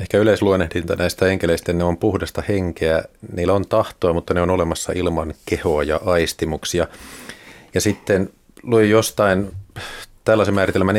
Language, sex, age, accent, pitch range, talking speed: Finnish, male, 30-49, native, 90-115 Hz, 135 wpm